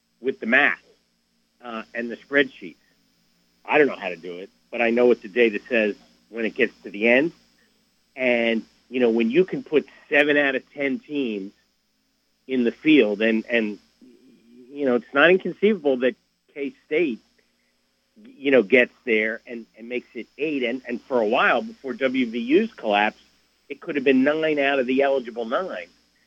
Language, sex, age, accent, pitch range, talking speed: English, male, 50-69, American, 120-145 Hz, 180 wpm